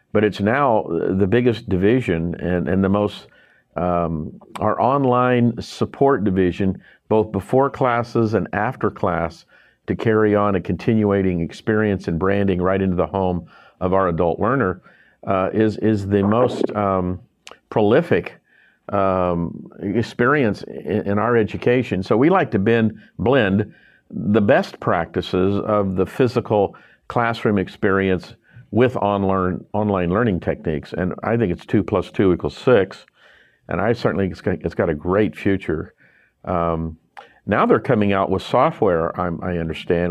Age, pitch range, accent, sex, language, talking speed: 50-69, 95-110 Hz, American, male, English, 140 wpm